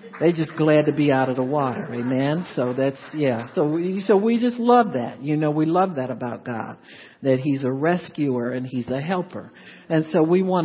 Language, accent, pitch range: English, American, 140-195 Hz